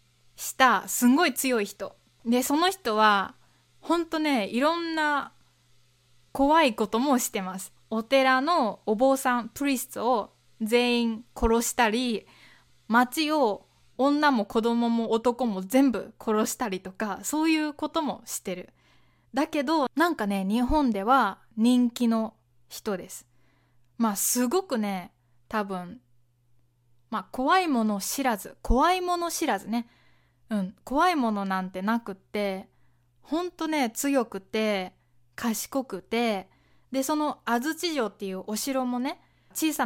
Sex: female